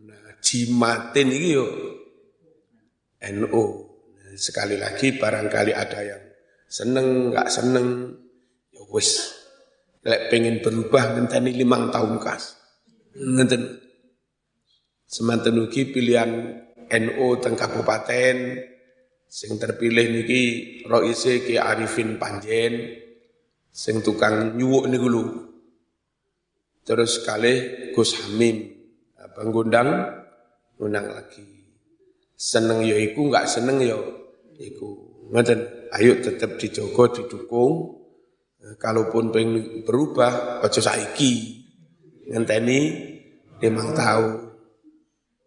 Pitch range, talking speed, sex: 115-130 Hz, 85 wpm, male